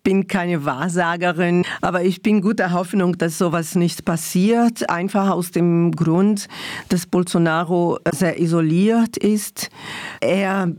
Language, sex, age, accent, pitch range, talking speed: German, female, 50-69, German, 165-200 Hz, 130 wpm